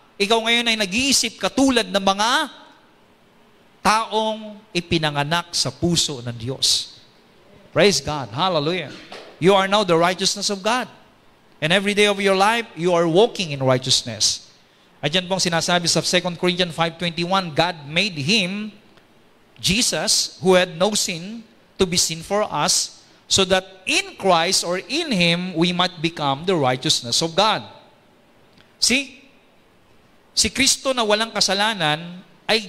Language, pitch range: English, 165-220 Hz